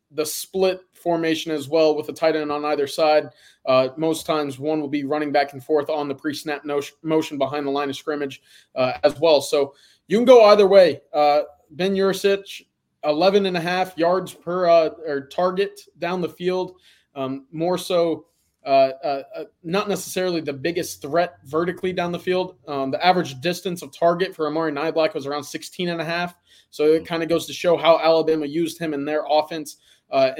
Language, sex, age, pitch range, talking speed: English, male, 20-39, 145-170 Hz, 200 wpm